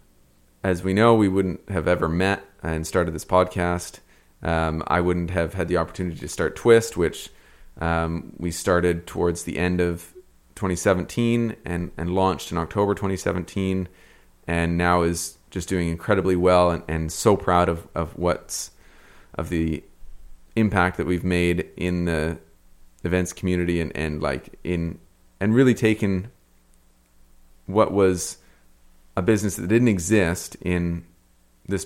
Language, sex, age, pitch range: English, male, 30-49, 80-95 Hz